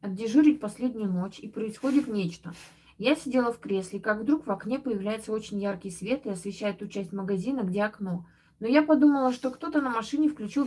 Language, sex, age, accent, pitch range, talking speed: Russian, female, 20-39, native, 200-255 Hz, 185 wpm